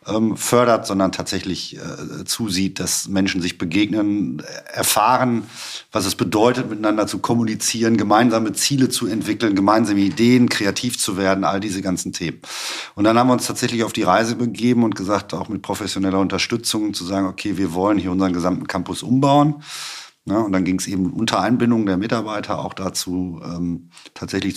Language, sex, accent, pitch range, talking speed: German, male, German, 95-115 Hz, 170 wpm